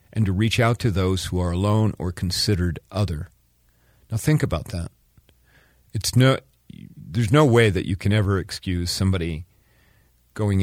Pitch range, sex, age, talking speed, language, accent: 90-110 Hz, male, 50-69, 160 wpm, English, American